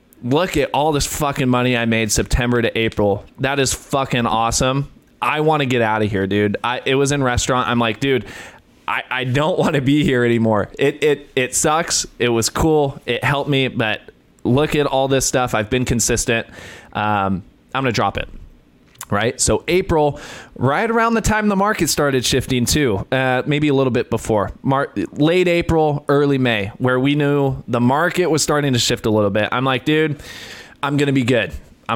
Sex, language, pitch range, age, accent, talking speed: male, English, 115-145 Hz, 20-39, American, 205 wpm